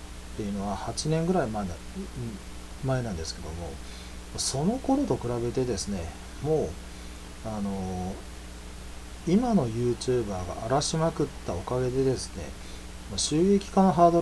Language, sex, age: Japanese, male, 40-59